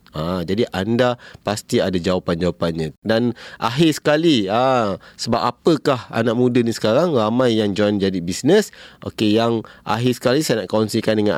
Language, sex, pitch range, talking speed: Malay, male, 95-135 Hz, 155 wpm